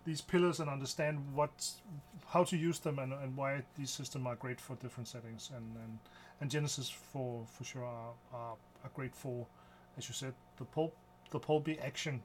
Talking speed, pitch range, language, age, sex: 195 wpm, 125-155 Hz, Danish, 40-59, male